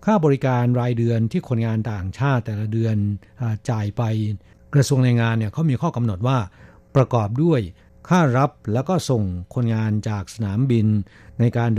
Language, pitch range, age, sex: Thai, 110-135 Hz, 60-79, male